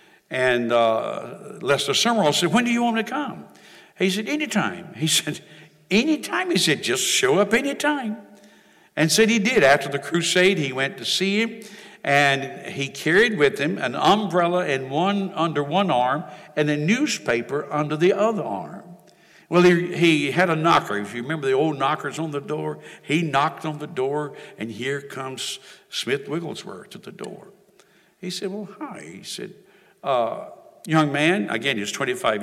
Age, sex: 60-79, male